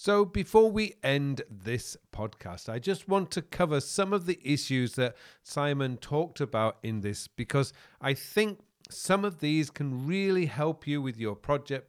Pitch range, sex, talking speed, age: 120-150 Hz, male, 170 wpm, 40-59